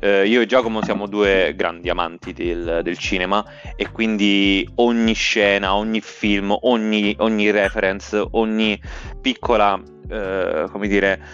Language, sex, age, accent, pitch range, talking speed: Italian, male, 20-39, native, 95-110 Hz, 130 wpm